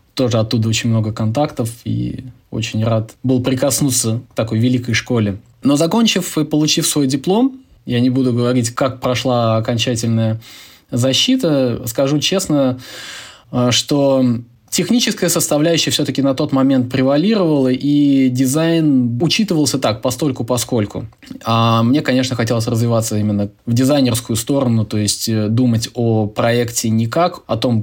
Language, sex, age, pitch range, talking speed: Russian, male, 20-39, 110-130 Hz, 130 wpm